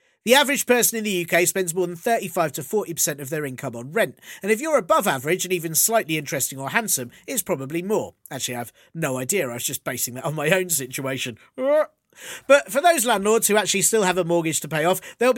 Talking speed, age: 230 wpm, 40-59